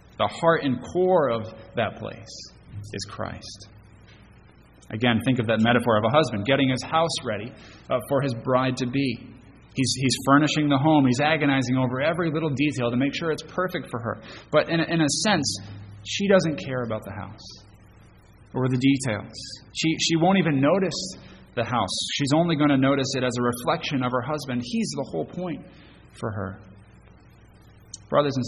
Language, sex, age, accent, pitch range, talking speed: English, male, 30-49, American, 105-140 Hz, 180 wpm